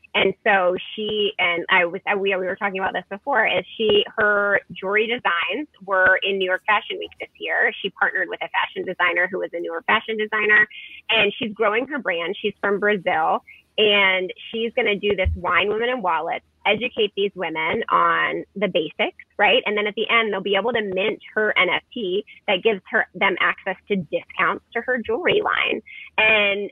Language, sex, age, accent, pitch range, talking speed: English, female, 20-39, American, 180-220 Hz, 195 wpm